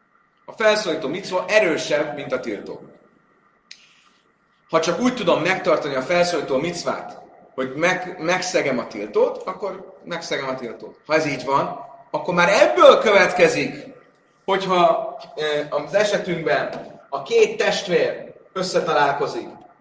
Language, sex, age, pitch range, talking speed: Hungarian, male, 30-49, 145-215 Hz, 120 wpm